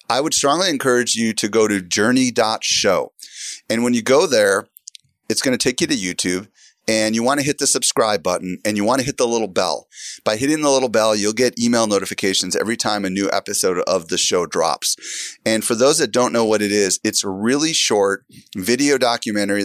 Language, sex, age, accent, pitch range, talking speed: English, male, 30-49, American, 95-115 Hz, 215 wpm